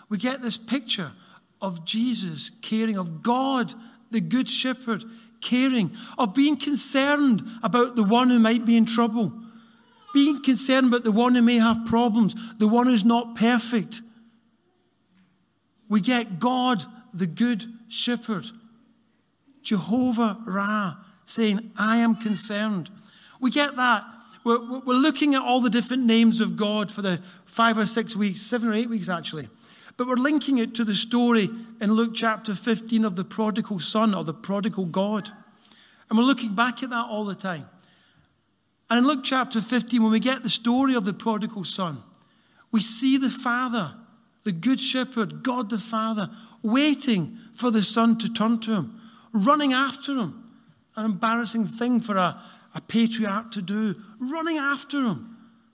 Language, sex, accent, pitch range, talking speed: English, male, British, 215-245 Hz, 160 wpm